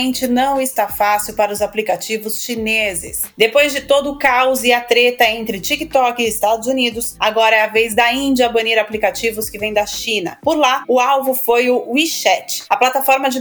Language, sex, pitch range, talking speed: Portuguese, female, 220-260 Hz, 190 wpm